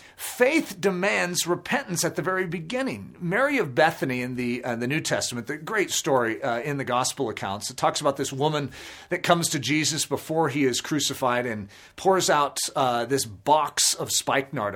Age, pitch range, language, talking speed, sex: 40-59, 140-205 Hz, English, 185 wpm, male